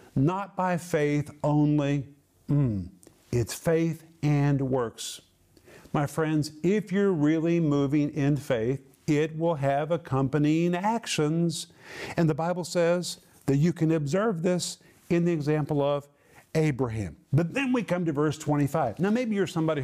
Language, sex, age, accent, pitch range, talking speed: English, male, 50-69, American, 145-200 Hz, 140 wpm